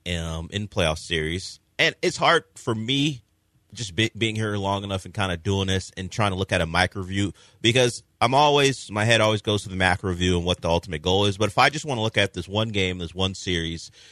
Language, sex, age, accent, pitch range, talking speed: English, male, 30-49, American, 95-115 Hz, 255 wpm